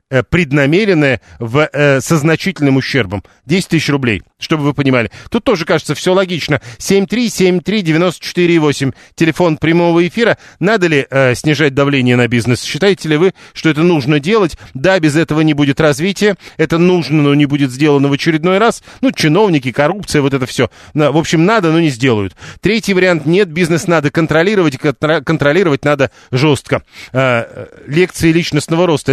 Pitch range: 135-170 Hz